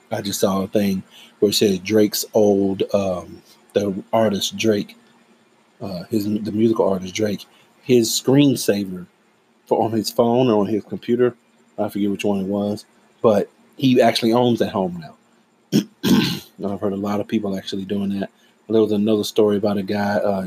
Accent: American